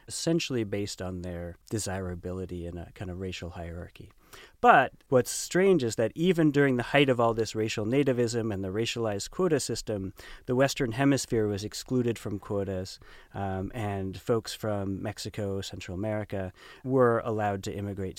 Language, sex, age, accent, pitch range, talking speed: English, male, 30-49, American, 95-110 Hz, 160 wpm